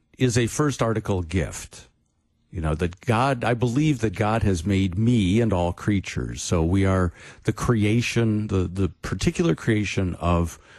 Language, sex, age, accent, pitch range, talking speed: English, male, 50-69, American, 95-130 Hz, 160 wpm